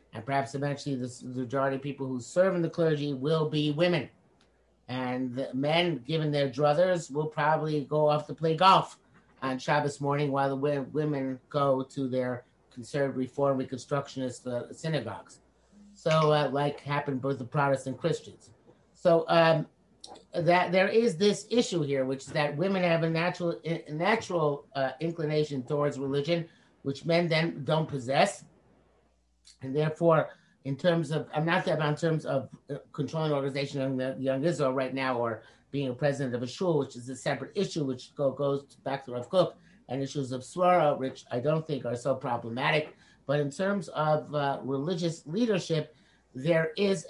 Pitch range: 135-160 Hz